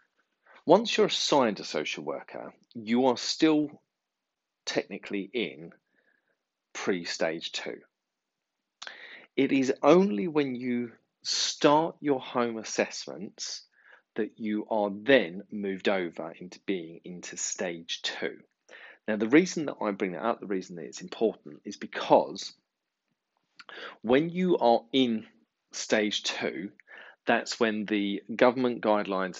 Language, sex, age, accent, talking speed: English, male, 40-59, British, 120 wpm